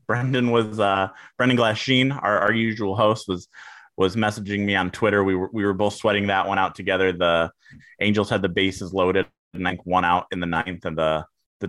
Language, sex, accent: English, male, American